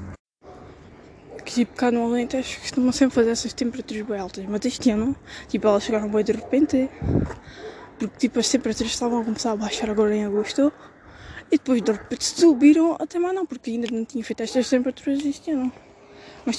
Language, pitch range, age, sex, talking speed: Portuguese, 215-265 Hz, 20-39, female, 185 wpm